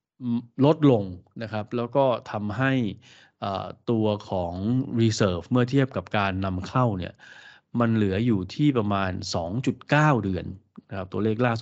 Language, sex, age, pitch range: Thai, male, 20-39, 100-125 Hz